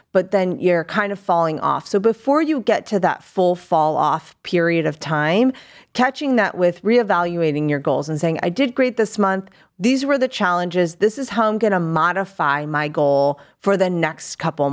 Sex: female